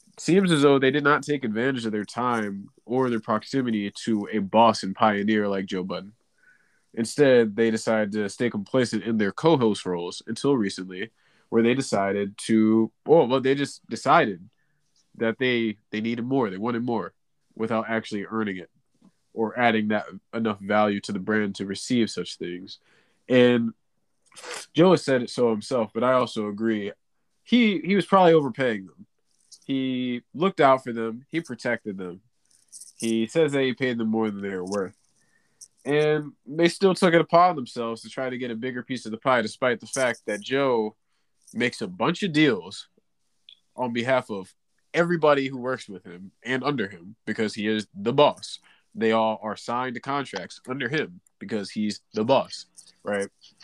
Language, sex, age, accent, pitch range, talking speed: English, male, 20-39, American, 105-135 Hz, 180 wpm